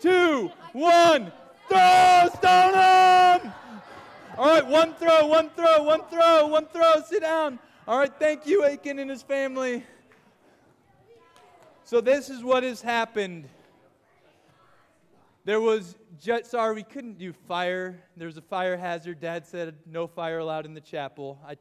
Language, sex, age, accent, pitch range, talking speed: English, male, 20-39, American, 155-220 Hz, 140 wpm